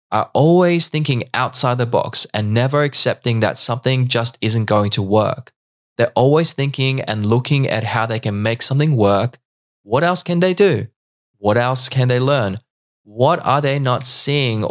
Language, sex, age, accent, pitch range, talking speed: English, male, 20-39, Australian, 110-140 Hz, 175 wpm